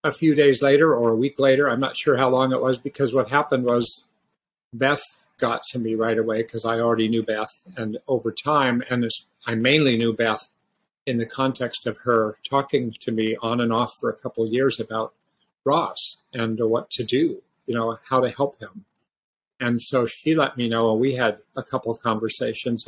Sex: male